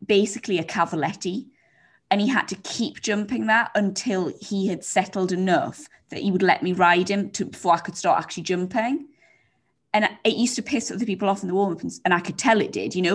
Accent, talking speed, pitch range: British, 220 wpm, 175-225 Hz